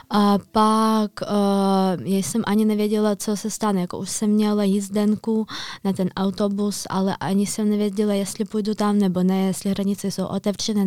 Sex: female